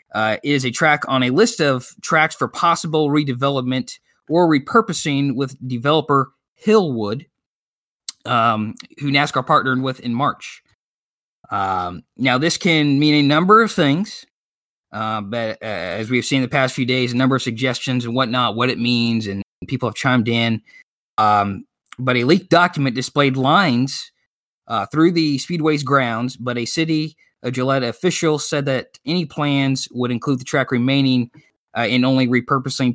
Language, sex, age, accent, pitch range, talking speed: English, male, 20-39, American, 120-145 Hz, 160 wpm